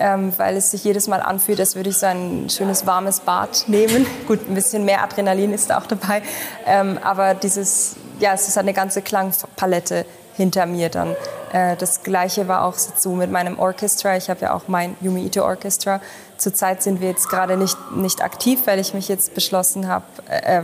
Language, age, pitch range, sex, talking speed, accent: German, 20-39, 180-200 Hz, female, 200 wpm, German